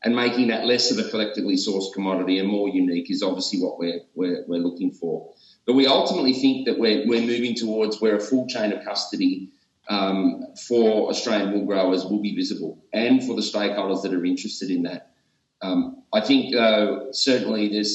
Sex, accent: male, Australian